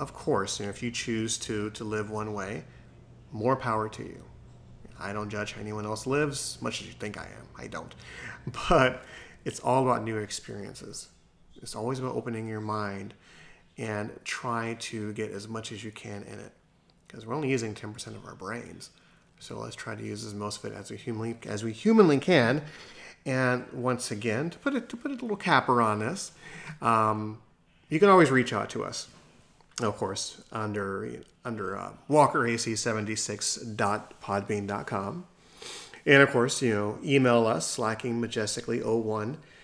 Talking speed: 175 wpm